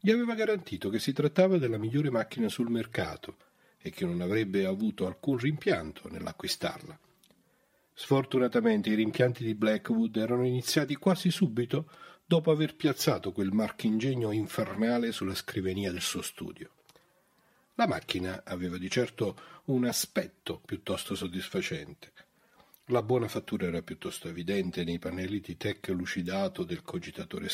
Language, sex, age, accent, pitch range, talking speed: Italian, male, 40-59, native, 110-175 Hz, 135 wpm